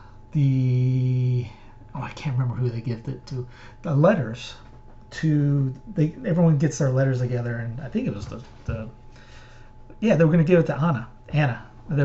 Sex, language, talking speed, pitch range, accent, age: male, English, 185 wpm, 125-145 Hz, American, 40-59